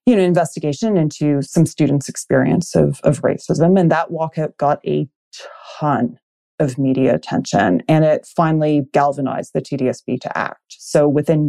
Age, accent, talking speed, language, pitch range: 30-49, American, 150 wpm, English, 145-180 Hz